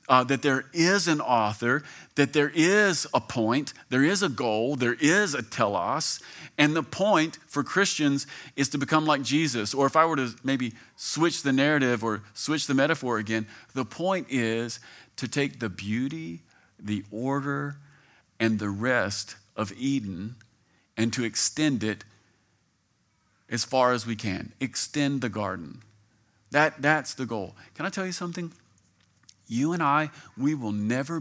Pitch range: 110-145 Hz